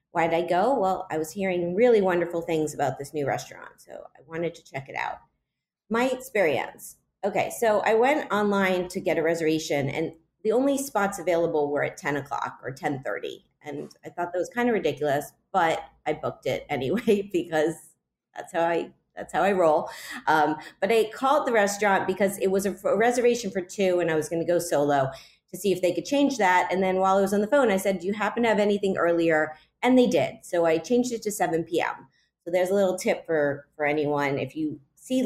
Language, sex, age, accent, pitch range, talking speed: English, female, 30-49, American, 155-200 Hz, 220 wpm